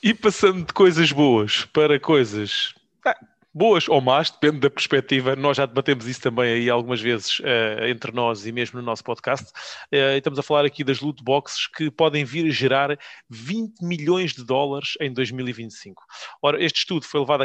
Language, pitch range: English, 125-150 Hz